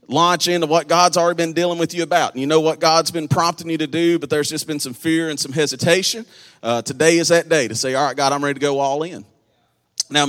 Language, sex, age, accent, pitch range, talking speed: English, male, 30-49, American, 135-165 Hz, 270 wpm